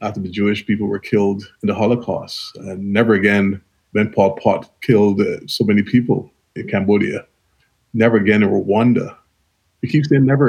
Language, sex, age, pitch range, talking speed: English, male, 20-39, 105-125 Hz, 170 wpm